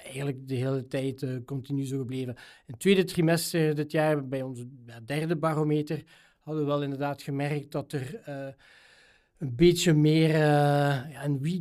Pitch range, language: 140-175 Hz, Dutch